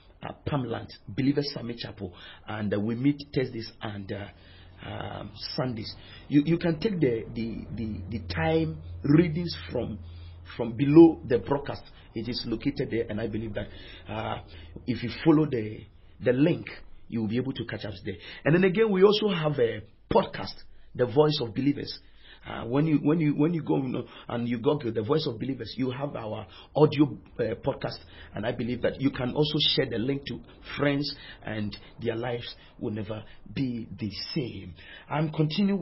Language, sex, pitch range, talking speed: English, male, 105-145 Hz, 185 wpm